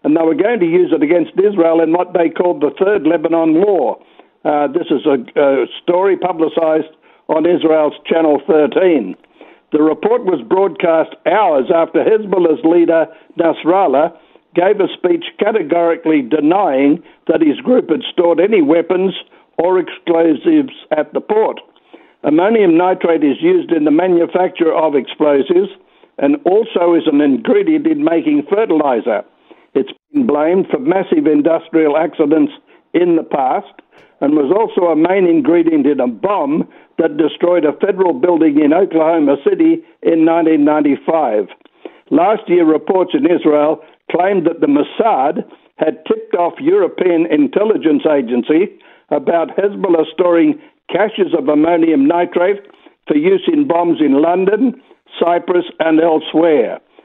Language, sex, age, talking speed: English, male, 60-79, 140 wpm